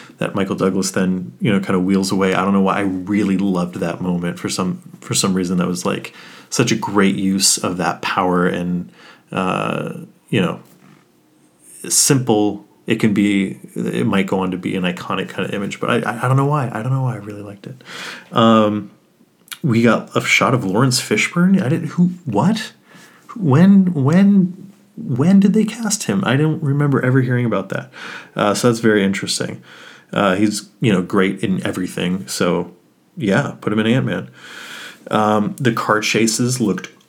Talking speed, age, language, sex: 190 wpm, 30-49, English, male